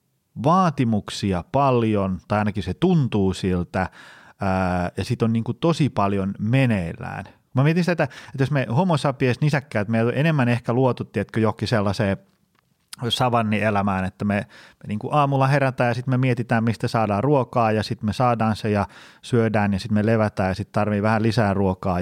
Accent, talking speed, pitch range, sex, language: native, 175 wpm, 95-125 Hz, male, Finnish